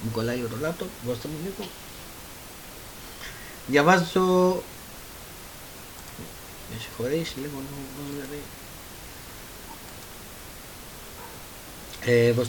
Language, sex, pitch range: Greek, male, 120-150 Hz